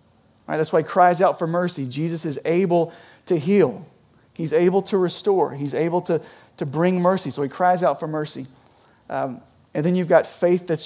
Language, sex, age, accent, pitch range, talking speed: English, male, 30-49, American, 140-180 Hz, 205 wpm